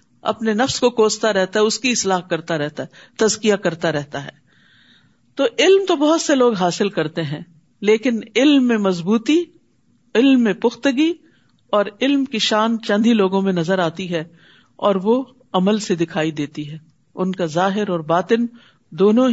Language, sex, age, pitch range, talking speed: Urdu, female, 50-69, 185-250 Hz, 170 wpm